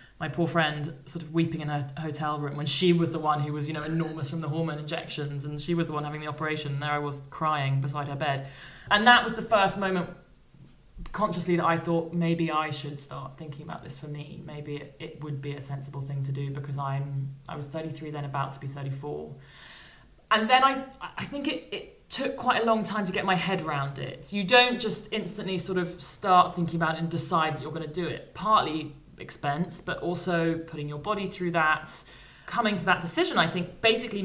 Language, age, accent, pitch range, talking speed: English, 20-39, British, 145-175 Hz, 230 wpm